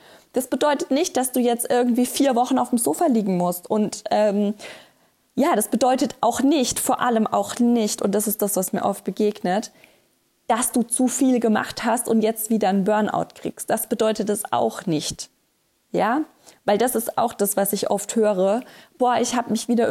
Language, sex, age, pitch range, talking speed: German, female, 20-39, 205-245 Hz, 195 wpm